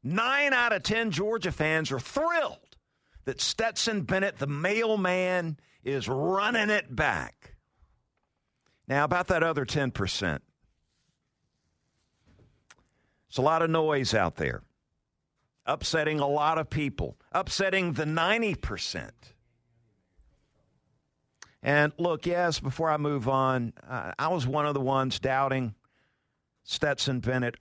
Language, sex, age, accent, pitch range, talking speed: English, male, 50-69, American, 130-180 Hz, 115 wpm